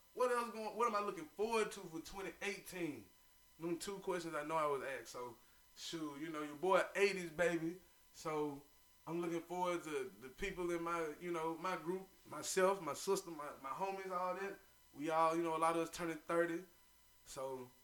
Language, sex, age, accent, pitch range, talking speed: English, male, 20-39, American, 165-200 Hz, 190 wpm